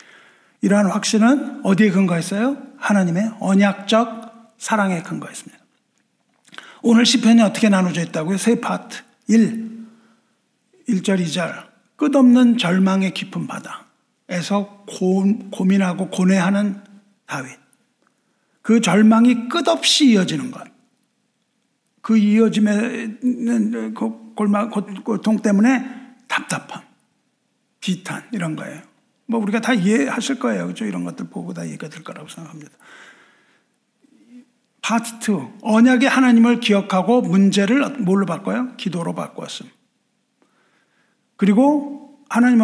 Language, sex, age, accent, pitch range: Korean, male, 60-79, native, 200-240 Hz